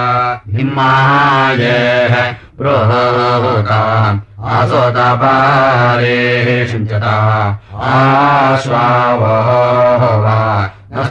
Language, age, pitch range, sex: Russian, 30-49, 120-135 Hz, male